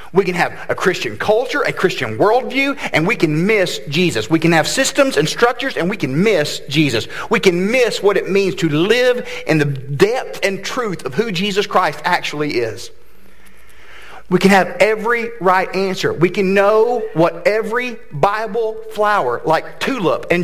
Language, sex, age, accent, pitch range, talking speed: English, male, 40-59, American, 160-255 Hz, 175 wpm